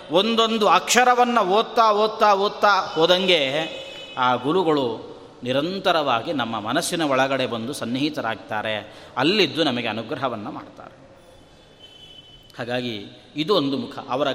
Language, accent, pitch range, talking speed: Kannada, native, 150-225 Hz, 95 wpm